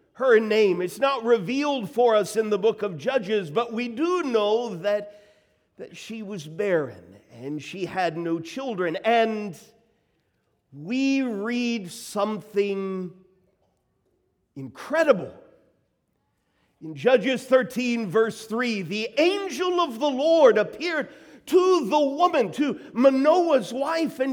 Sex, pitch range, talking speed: male, 210-300 Hz, 120 wpm